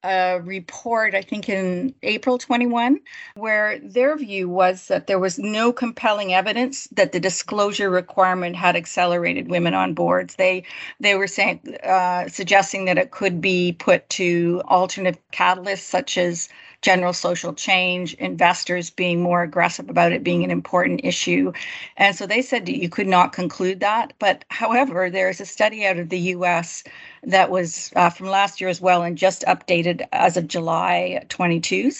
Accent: American